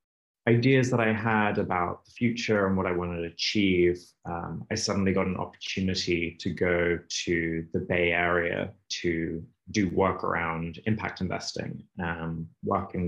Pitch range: 85-95 Hz